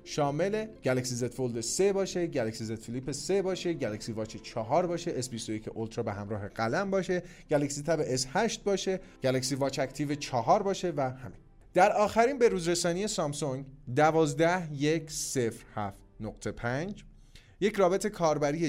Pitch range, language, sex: 130-175 Hz, Persian, male